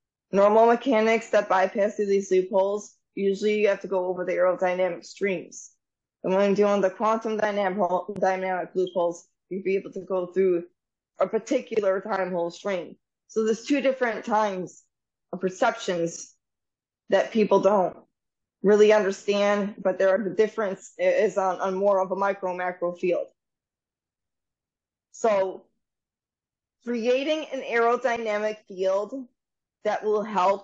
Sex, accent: female, American